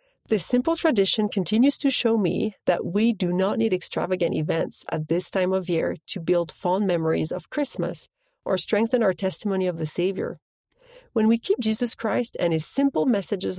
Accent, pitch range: Canadian, 175-245 Hz